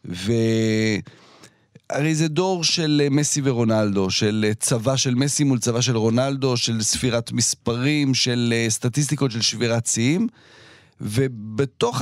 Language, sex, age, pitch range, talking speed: Hebrew, male, 40-59, 105-140 Hz, 115 wpm